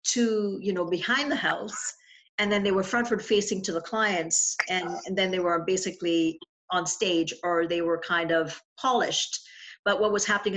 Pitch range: 180-245 Hz